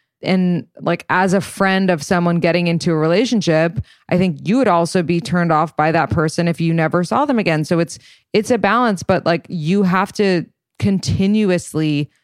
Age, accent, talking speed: 20-39, American, 190 wpm